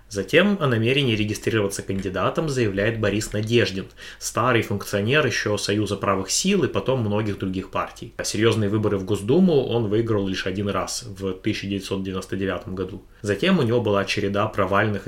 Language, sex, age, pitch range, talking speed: Russian, male, 20-39, 95-115 Hz, 145 wpm